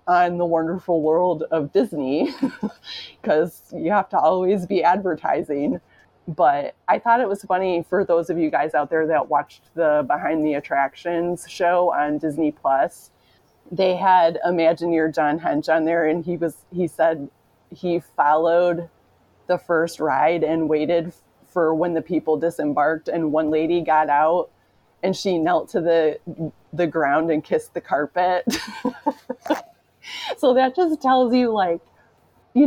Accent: American